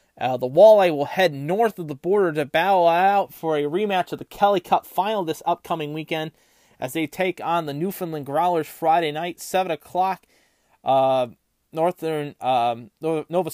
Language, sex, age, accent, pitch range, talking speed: English, male, 20-39, American, 145-170 Hz, 170 wpm